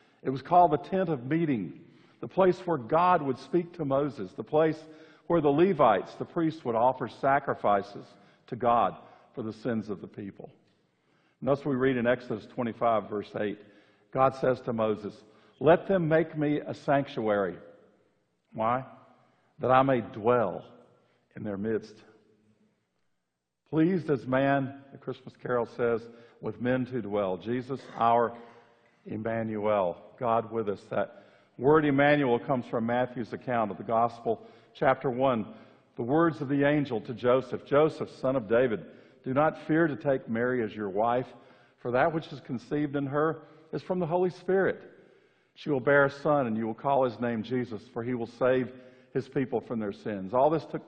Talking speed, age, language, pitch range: 170 wpm, 50-69, English, 115-145 Hz